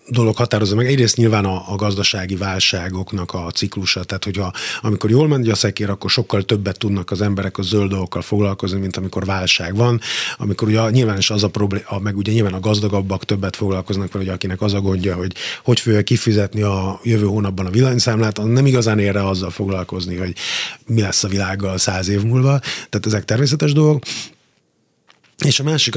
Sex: male